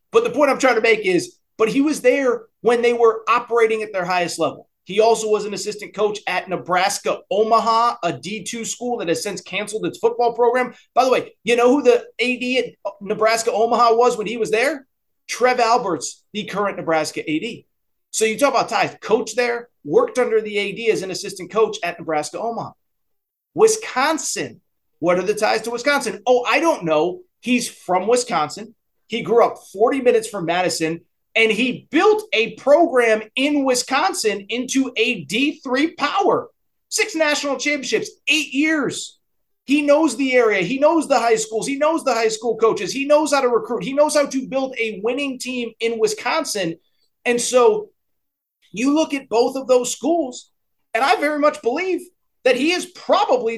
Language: English